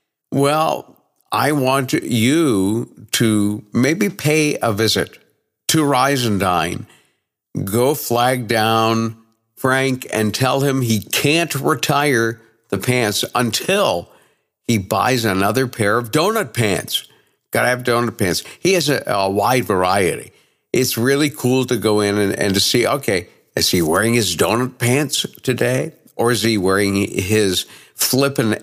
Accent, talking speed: American, 145 wpm